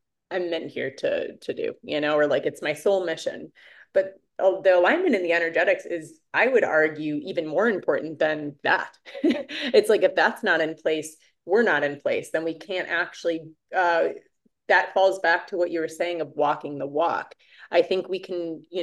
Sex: female